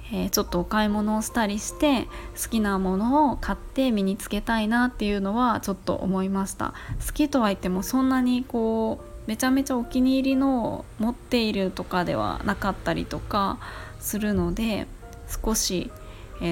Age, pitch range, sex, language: 20-39, 180-235 Hz, female, Japanese